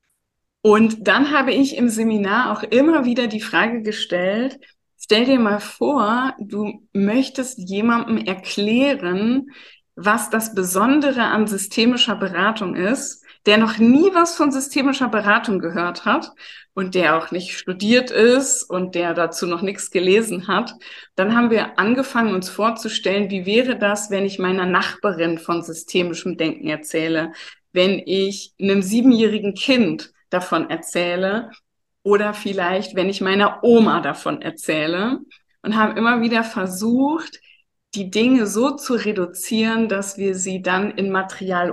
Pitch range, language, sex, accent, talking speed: 190-240 Hz, German, female, German, 140 wpm